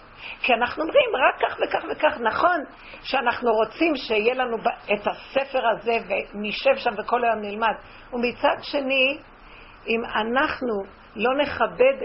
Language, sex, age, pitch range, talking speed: Hebrew, female, 50-69, 235-300 Hz, 130 wpm